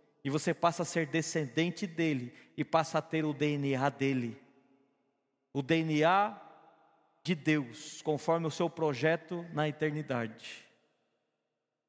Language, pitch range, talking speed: Portuguese, 155-215 Hz, 120 wpm